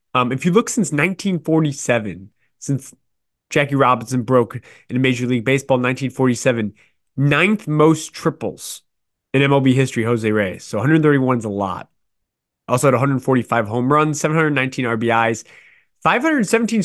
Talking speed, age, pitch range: 130 wpm, 20-39, 115-145 Hz